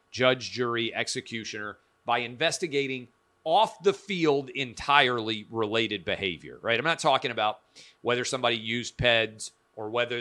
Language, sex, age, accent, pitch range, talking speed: English, male, 40-59, American, 110-135 Hz, 130 wpm